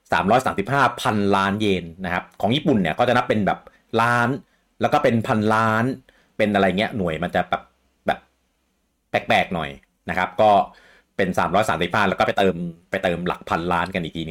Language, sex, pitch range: Thai, male, 80-100 Hz